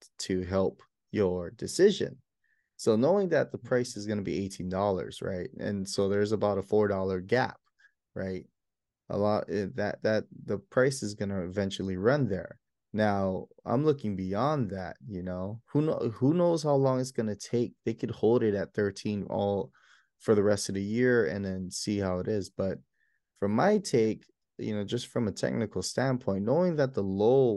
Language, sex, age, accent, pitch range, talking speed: English, male, 20-39, American, 95-120 Hz, 185 wpm